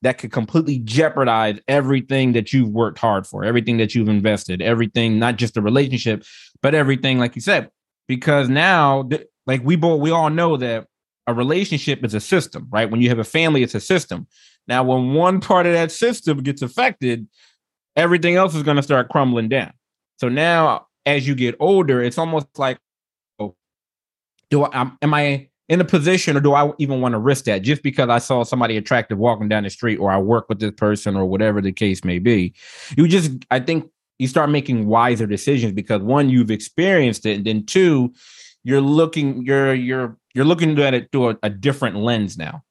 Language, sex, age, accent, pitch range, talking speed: English, male, 20-39, American, 110-145 Hz, 200 wpm